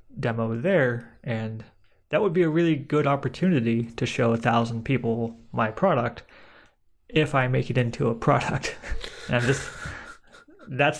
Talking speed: 145 wpm